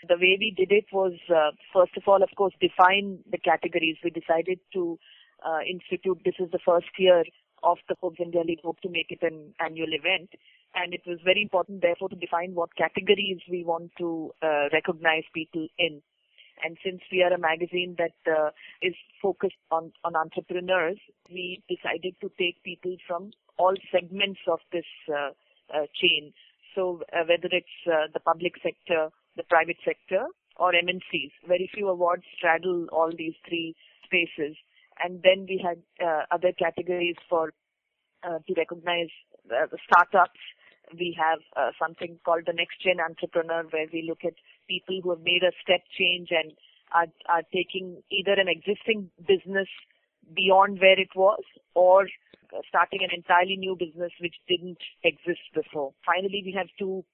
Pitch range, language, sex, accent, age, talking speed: 165-185 Hz, English, female, Indian, 30-49, 165 wpm